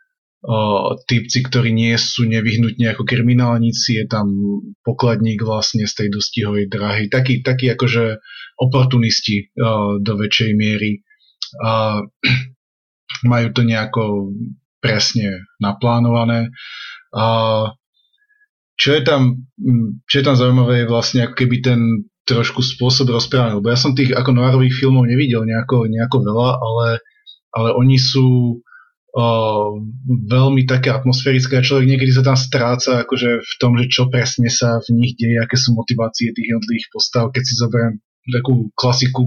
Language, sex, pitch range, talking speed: Slovak, male, 115-130 Hz, 135 wpm